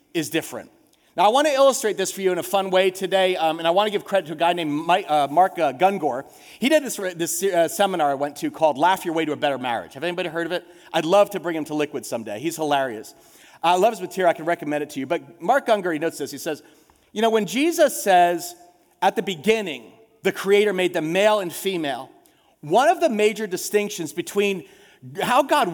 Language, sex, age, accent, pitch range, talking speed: English, male, 40-59, American, 175-220 Hz, 240 wpm